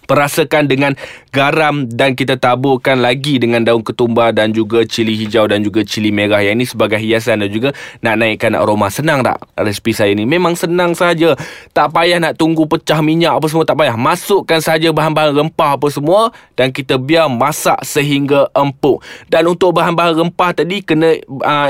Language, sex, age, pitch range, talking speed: Malay, male, 20-39, 125-170 Hz, 175 wpm